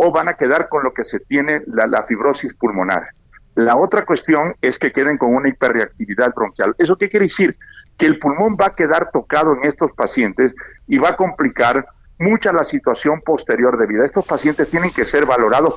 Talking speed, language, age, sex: 200 wpm, Spanish, 60-79, male